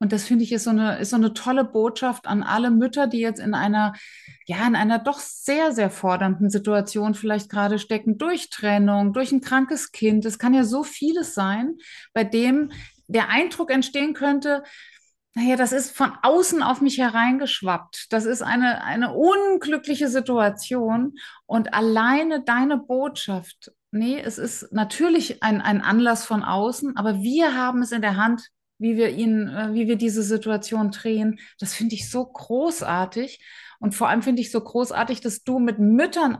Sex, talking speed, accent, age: female, 175 wpm, German, 30-49